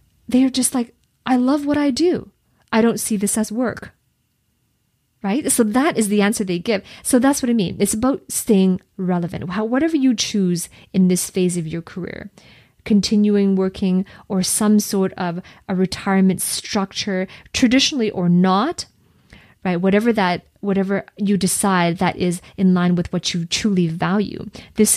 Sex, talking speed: female, 165 wpm